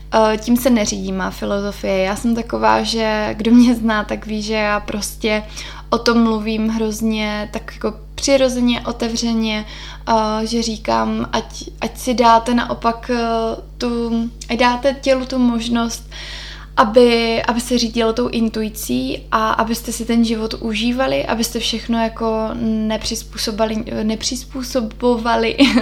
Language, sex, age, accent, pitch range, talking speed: Czech, female, 20-39, native, 205-235 Hz, 125 wpm